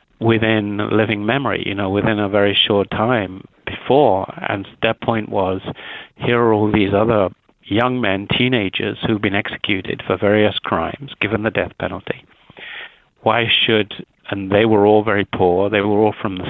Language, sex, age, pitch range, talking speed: English, male, 50-69, 100-115 Hz, 165 wpm